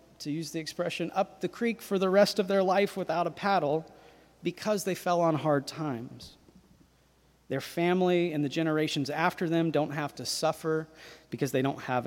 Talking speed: 185 wpm